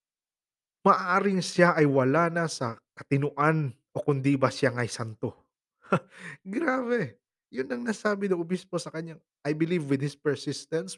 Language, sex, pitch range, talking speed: Filipino, male, 115-150 Hz, 140 wpm